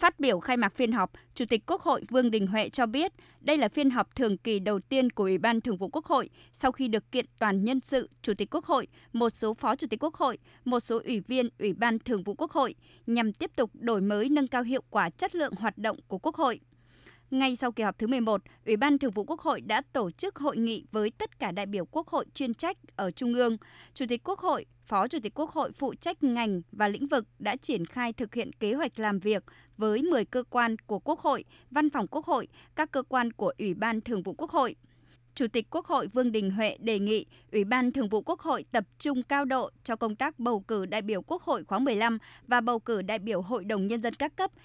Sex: female